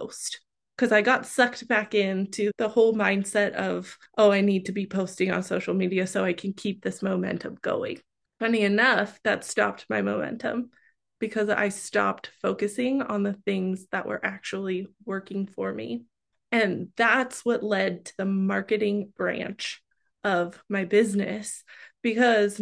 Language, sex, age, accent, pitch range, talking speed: English, female, 20-39, American, 195-230 Hz, 150 wpm